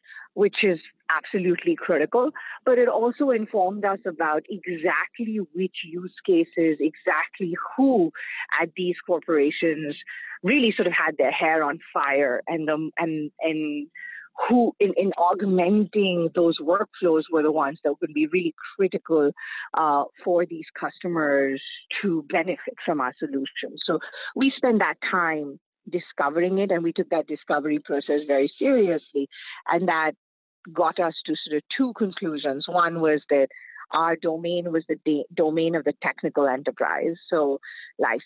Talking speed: 145 wpm